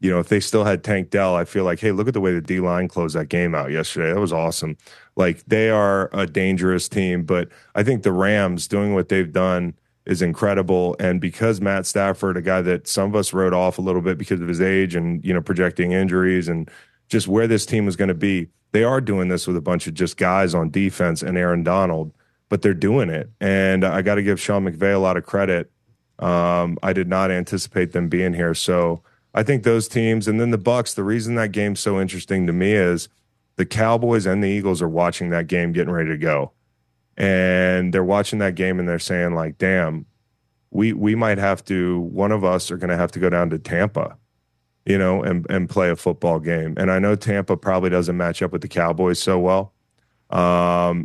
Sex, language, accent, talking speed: male, English, American, 230 wpm